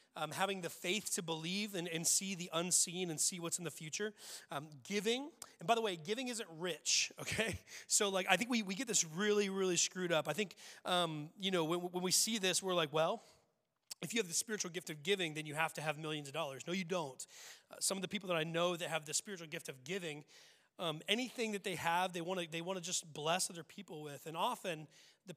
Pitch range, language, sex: 155-185 Hz, English, male